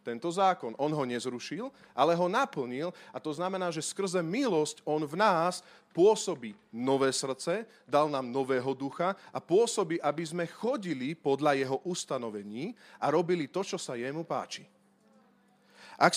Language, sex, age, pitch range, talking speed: Slovak, male, 40-59, 150-215 Hz, 150 wpm